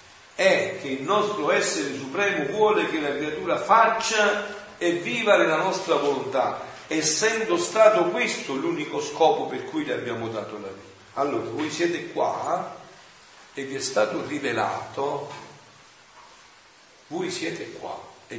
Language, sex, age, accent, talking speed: Italian, male, 50-69, native, 135 wpm